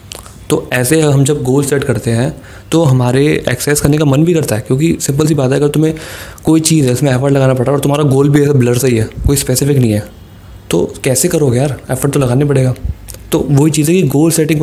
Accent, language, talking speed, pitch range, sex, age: native, Hindi, 245 wpm, 120-150 Hz, male, 20-39